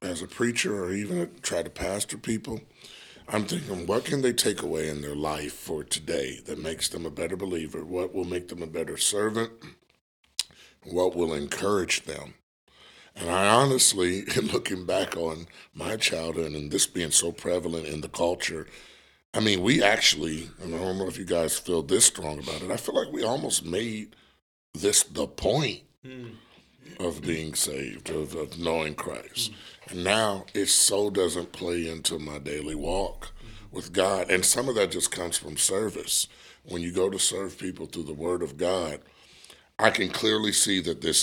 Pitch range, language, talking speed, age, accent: 80-105 Hz, English, 180 wpm, 60-79, American